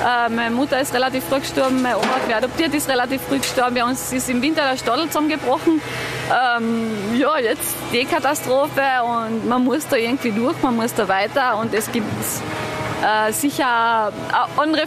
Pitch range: 225-275 Hz